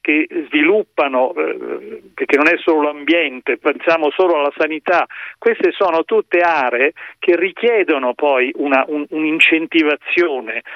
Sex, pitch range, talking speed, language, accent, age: male, 145-205 Hz, 115 wpm, Italian, native, 40-59